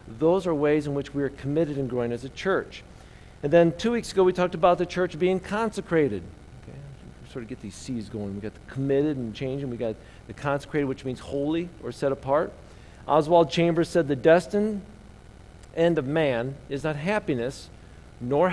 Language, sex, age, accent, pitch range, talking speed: English, male, 50-69, American, 120-170 Hz, 195 wpm